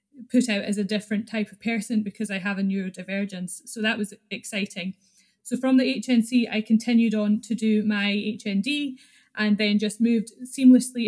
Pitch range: 200-225 Hz